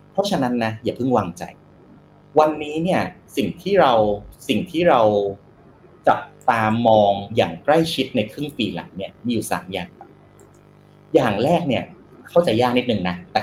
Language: Thai